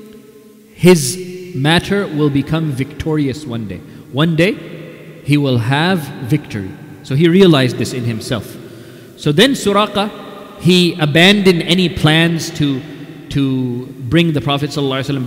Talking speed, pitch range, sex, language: 125 wpm, 135-165 Hz, male, English